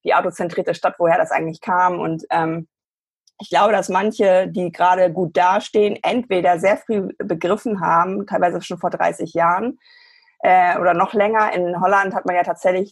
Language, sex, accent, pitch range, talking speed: German, female, German, 165-200 Hz, 170 wpm